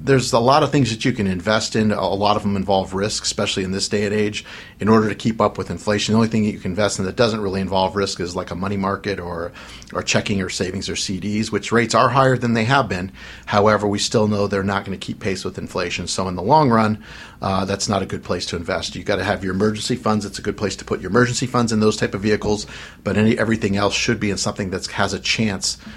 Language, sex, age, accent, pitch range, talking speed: English, male, 40-59, American, 95-105 Hz, 275 wpm